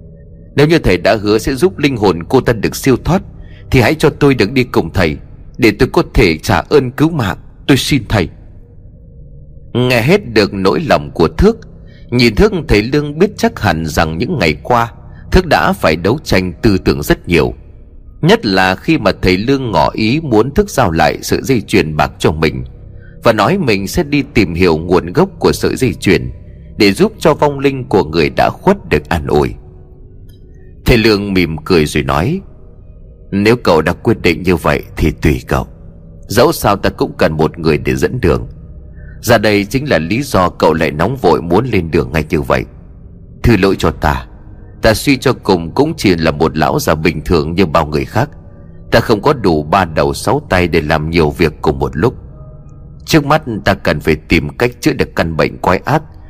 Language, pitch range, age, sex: Vietnamese, 80-120 Hz, 30-49, male